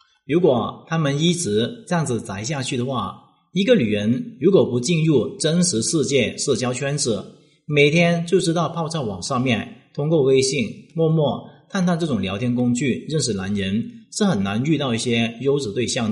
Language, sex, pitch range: Chinese, male, 115-175 Hz